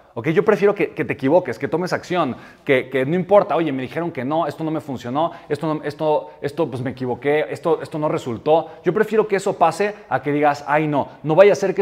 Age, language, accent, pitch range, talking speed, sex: 30-49, Spanish, Mexican, 135-180 Hz, 250 wpm, male